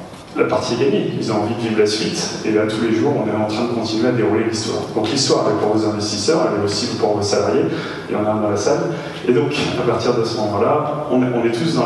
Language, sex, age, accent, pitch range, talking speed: French, male, 30-49, French, 110-135 Hz, 275 wpm